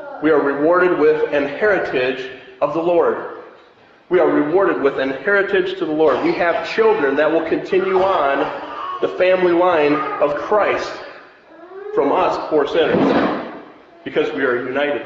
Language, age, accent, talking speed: English, 40-59, American, 150 wpm